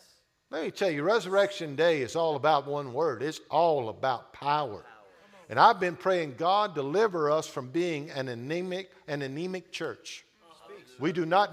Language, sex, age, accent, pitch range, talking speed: English, male, 50-69, American, 160-210 Hz, 160 wpm